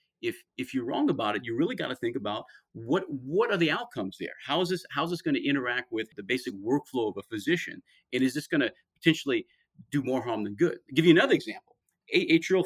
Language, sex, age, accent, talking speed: English, male, 40-59, American, 230 wpm